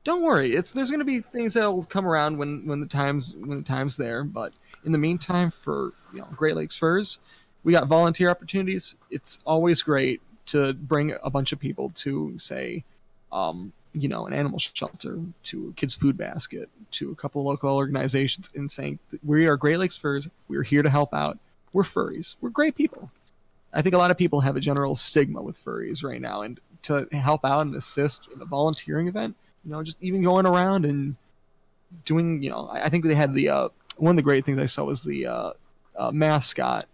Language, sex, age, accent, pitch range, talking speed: English, male, 20-39, American, 140-175 Hz, 210 wpm